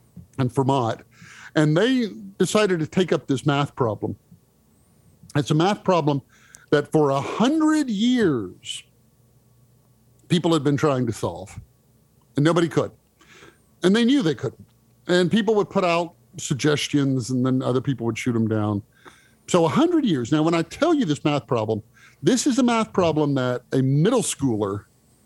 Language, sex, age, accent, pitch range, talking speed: English, male, 50-69, American, 120-165 Hz, 165 wpm